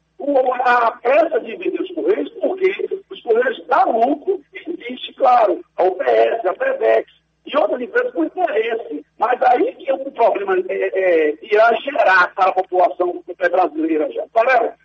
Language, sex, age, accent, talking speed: Portuguese, male, 60-79, Brazilian, 160 wpm